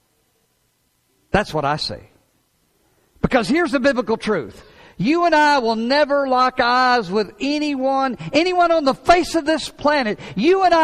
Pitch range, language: 175-265 Hz, English